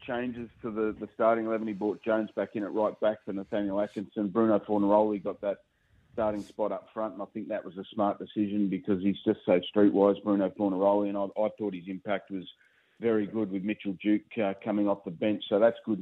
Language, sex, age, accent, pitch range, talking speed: English, male, 40-59, Australian, 100-110 Hz, 225 wpm